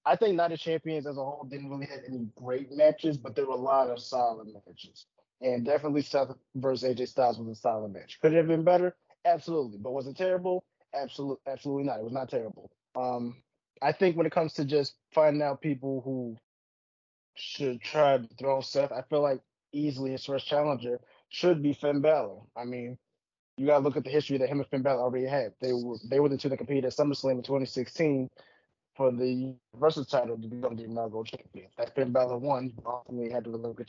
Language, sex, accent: English, male, American